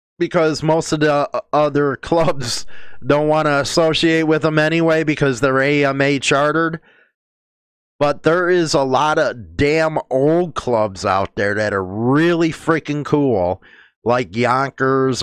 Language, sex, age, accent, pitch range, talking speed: English, male, 30-49, American, 130-155 Hz, 140 wpm